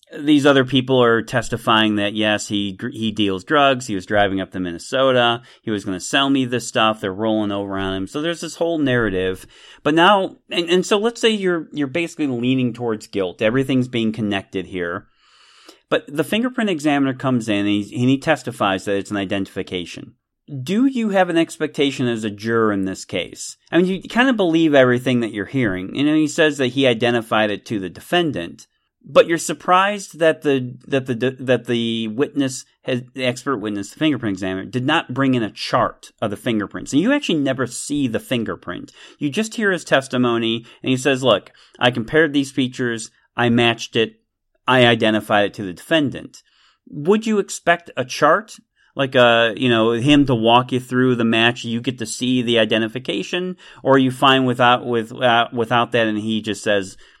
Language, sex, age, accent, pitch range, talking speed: English, male, 40-59, American, 110-145 Hz, 200 wpm